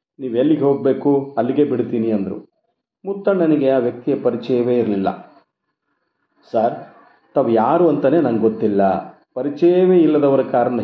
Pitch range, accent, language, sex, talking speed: 115-145 Hz, native, Kannada, male, 100 wpm